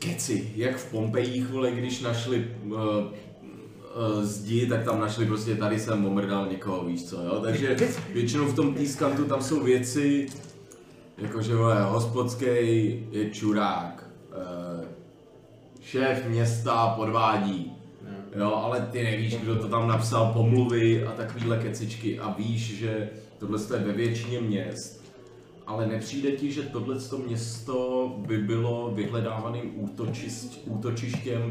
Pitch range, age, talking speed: 105-120 Hz, 30-49, 130 wpm